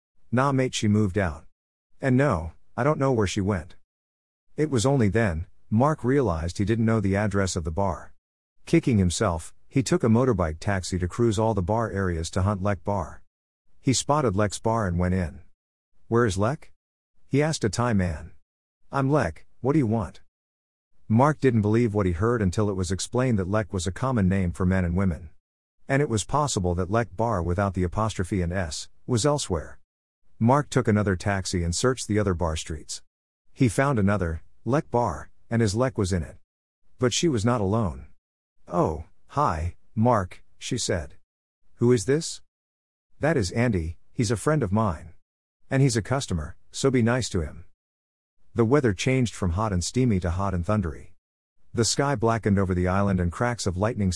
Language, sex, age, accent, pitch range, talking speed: English, male, 50-69, American, 85-115 Hz, 190 wpm